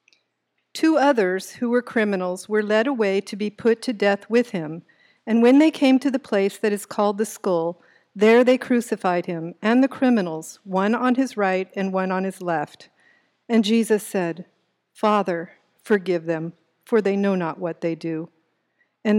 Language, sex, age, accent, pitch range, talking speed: English, female, 50-69, American, 180-230 Hz, 180 wpm